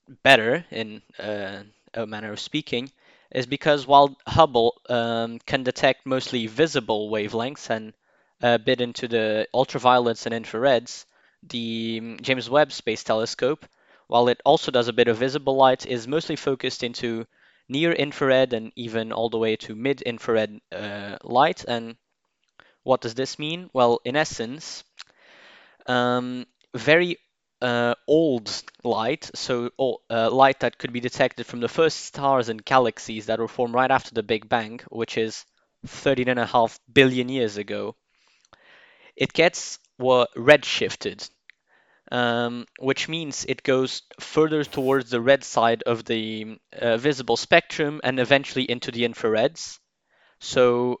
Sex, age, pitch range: male, 10-29, 115-135 Hz